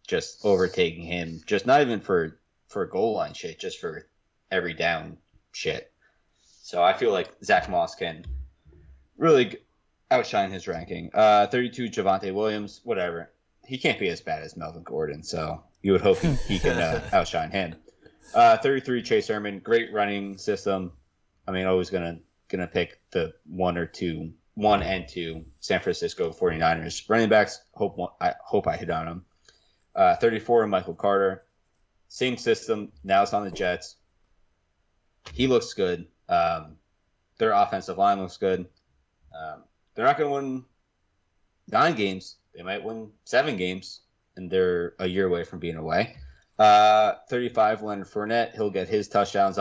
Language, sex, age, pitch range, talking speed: English, male, 20-39, 85-115 Hz, 160 wpm